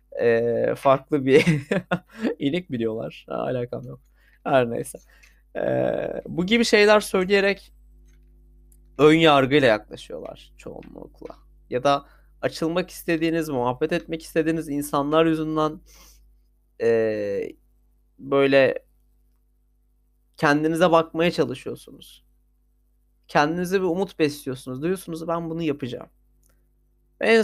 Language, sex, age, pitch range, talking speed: Turkish, male, 30-49, 125-165 Hz, 90 wpm